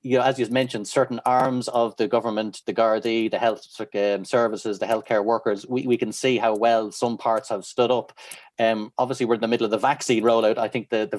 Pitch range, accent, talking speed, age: 110-135 Hz, Irish, 230 wpm, 30-49